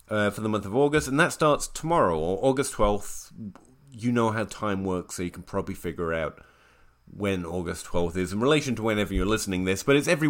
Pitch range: 100-135 Hz